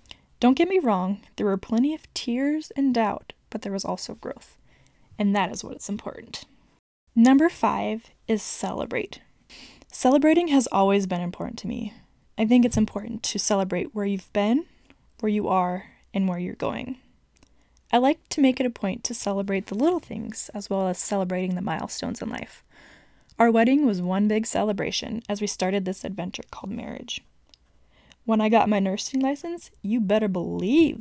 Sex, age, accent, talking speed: female, 10-29, American, 175 wpm